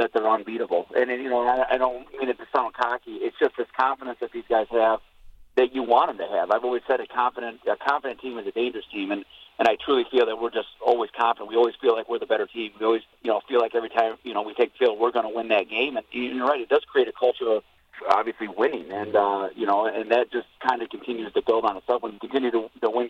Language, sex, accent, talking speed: English, male, American, 285 wpm